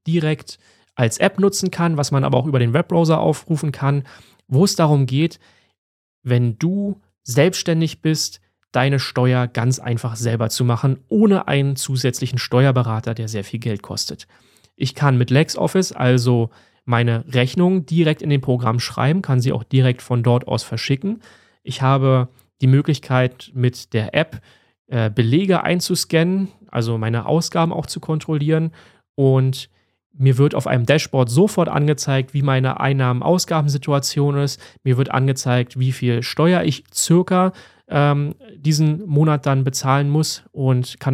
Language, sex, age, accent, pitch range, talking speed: German, male, 30-49, German, 125-155 Hz, 145 wpm